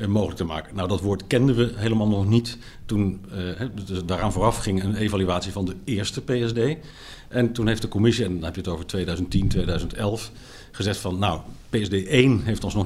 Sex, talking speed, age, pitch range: male, 200 wpm, 50-69, 95-120 Hz